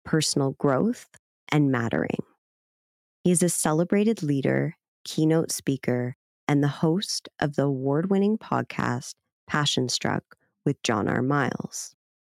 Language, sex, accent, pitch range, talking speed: English, female, American, 130-165 Hz, 115 wpm